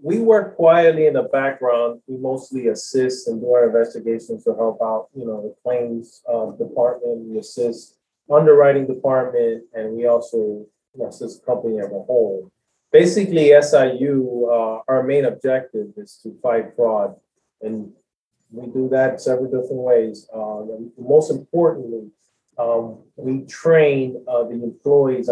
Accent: American